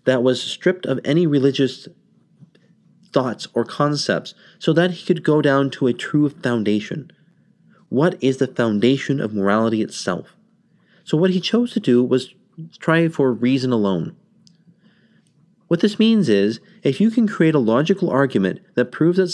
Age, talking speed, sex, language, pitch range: 30-49, 160 wpm, male, English, 120-180 Hz